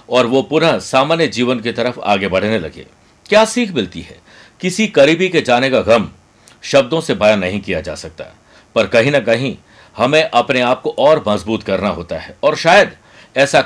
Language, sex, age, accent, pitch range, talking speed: Hindi, male, 60-79, native, 110-155 Hz, 190 wpm